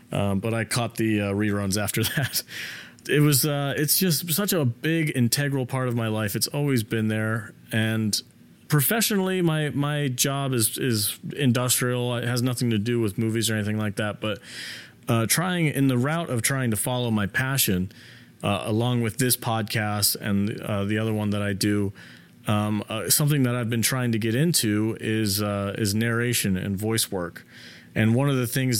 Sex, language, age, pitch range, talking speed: male, English, 30-49, 110-130 Hz, 190 wpm